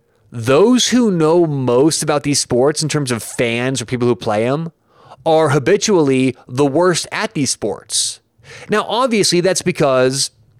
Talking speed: 155 wpm